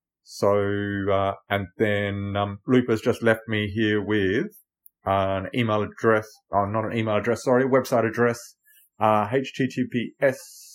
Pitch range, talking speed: 105-135 Hz, 140 wpm